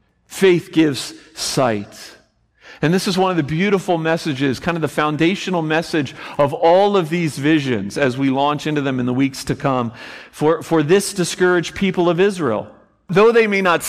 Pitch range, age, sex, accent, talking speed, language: 115-170 Hz, 40-59, male, American, 180 wpm, English